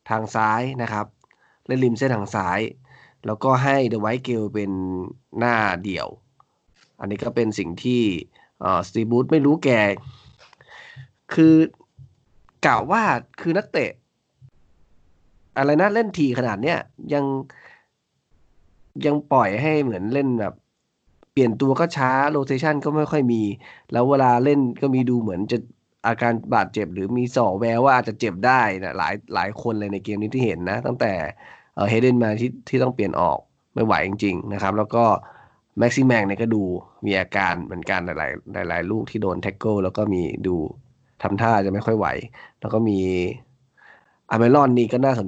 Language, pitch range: Thai, 100-130 Hz